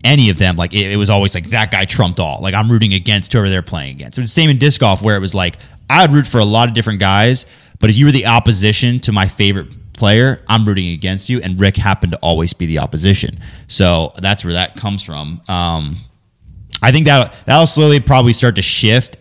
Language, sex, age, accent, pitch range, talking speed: English, male, 20-39, American, 90-115 Hz, 245 wpm